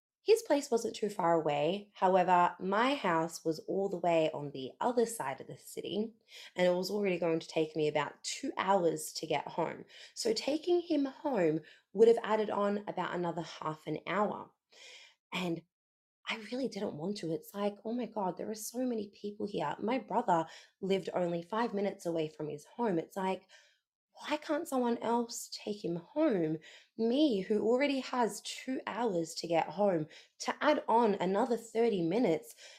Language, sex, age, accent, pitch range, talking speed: English, female, 20-39, Australian, 160-235 Hz, 180 wpm